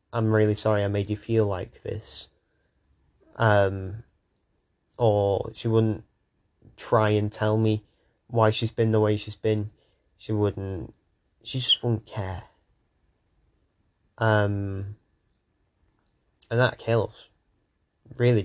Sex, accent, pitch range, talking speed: male, British, 100-115 Hz, 115 wpm